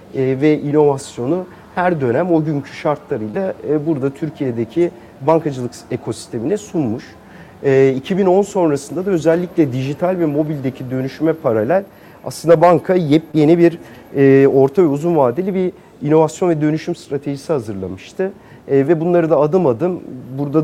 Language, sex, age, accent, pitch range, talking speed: English, male, 40-59, Turkish, 135-165 Hz, 120 wpm